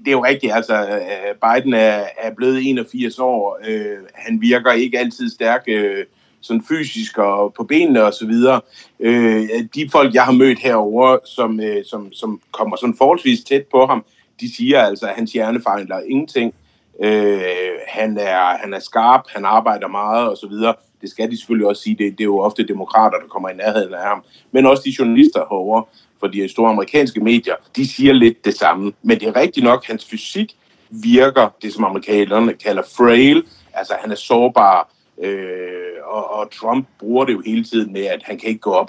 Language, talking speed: Danish, 195 wpm